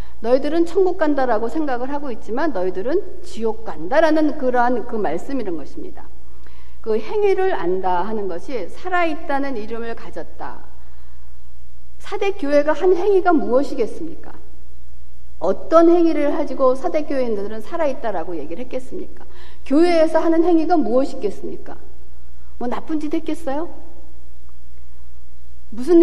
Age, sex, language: 60-79, female, Korean